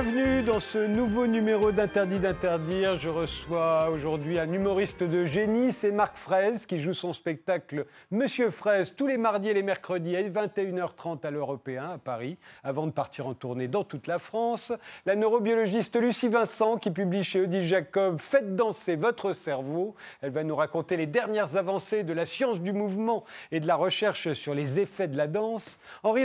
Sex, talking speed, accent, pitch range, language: male, 185 wpm, French, 165-215 Hz, French